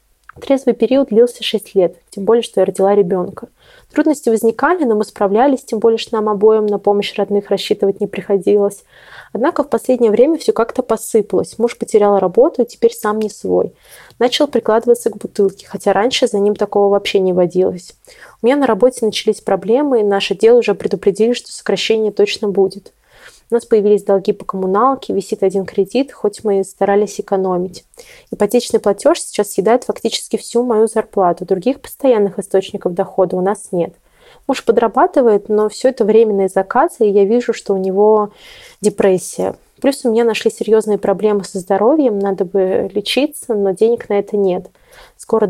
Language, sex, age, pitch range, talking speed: Russian, female, 20-39, 200-235 Hz, 170 wpm